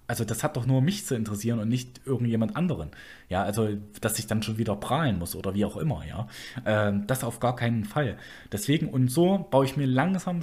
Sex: male